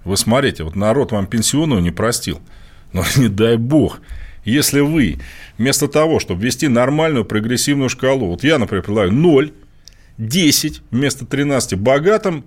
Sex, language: male, Russian